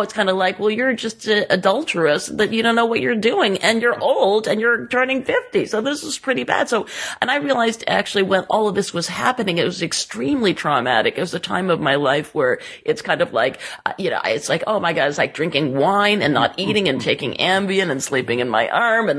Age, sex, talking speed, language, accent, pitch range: 40-59, female, 245 wpm, English, American, 155-220 Hz